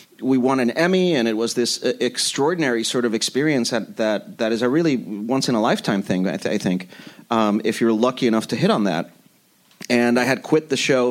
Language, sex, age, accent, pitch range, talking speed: English, male, 40-59, American, 110-140 Hz, 225 wpm